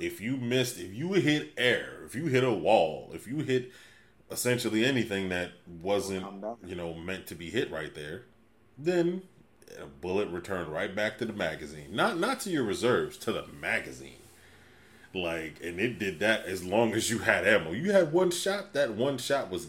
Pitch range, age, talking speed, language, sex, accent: 95-150 Hz, 30-49, 190 wpm, English, male, American